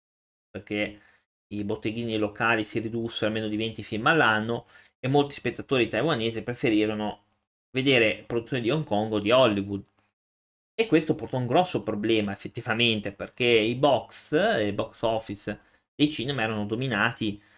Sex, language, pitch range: male, Italian, 105-130 Hz